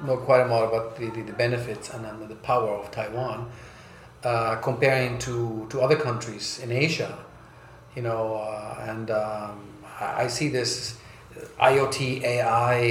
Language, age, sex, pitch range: Chinese, 40-59, male, 115-135 Hz